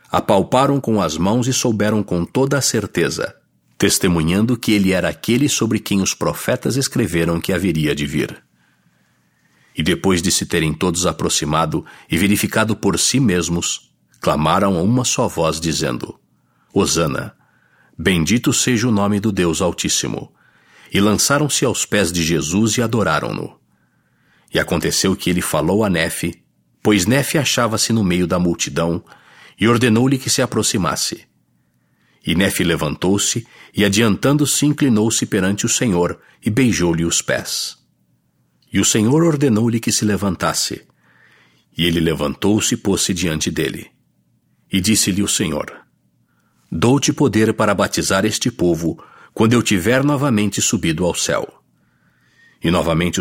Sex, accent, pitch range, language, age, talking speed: male, Brazilian, 85-120 Hz, English, 60-79, 140 wpm